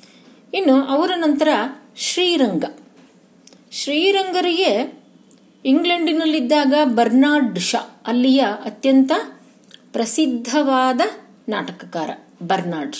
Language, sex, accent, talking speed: Kannada, female, native, 60 wpm